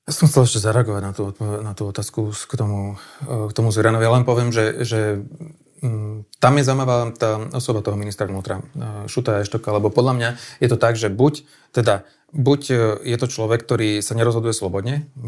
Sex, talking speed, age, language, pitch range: male, 195 wpm, 30-49, Slovak, 105-125 Hz